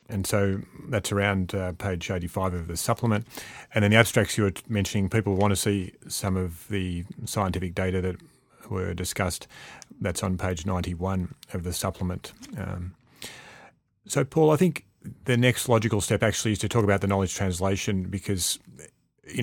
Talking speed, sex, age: 170 wpm, male, 30-49